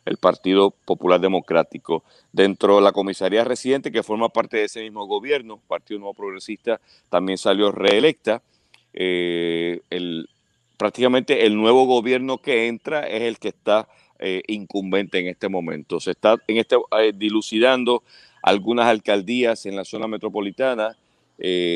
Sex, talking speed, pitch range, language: male, 145 wpm, 95-120 Hz, English